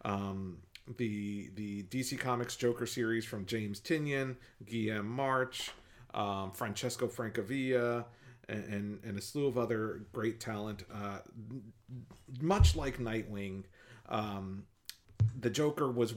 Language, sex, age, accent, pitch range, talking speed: English, male, 40-59, American, 105-125 Hz, 120 wpm